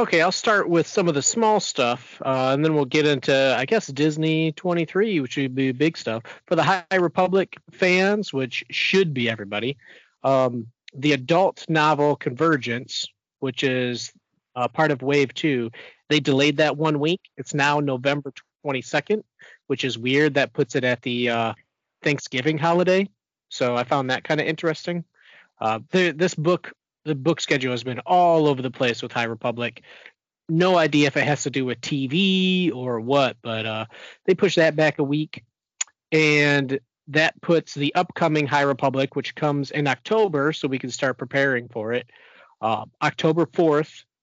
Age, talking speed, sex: 30-49, 170 wpm, male